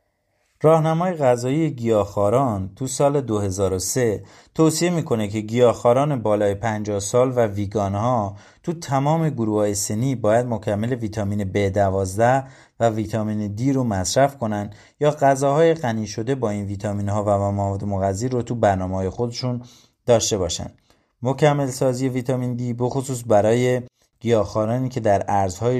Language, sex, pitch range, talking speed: Persian, male, 105-130 Hz, 140 wpm